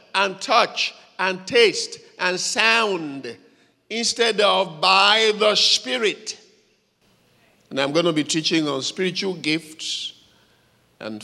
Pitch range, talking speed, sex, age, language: 145-215 Hz, 110 wpm, male, 50-69, English